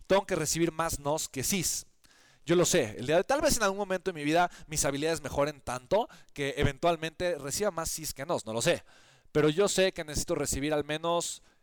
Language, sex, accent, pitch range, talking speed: Spanish, male, Mexican, 140-180 Hz, 205 wpm